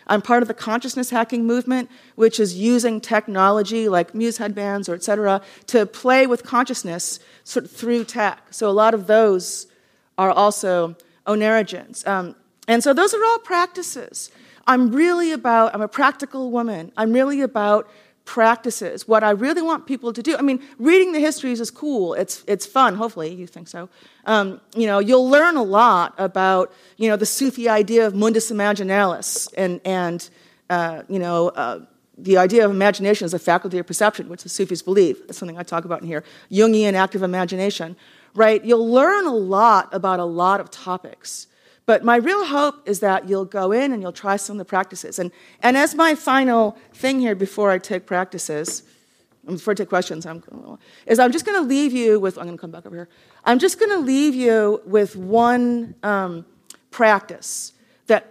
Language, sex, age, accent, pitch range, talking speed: English, female, 40-59, American, 190-245 Hz, 190 wpm